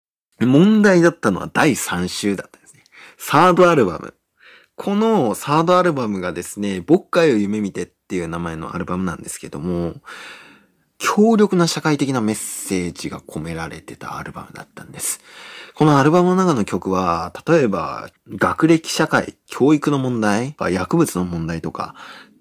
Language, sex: Japanese, male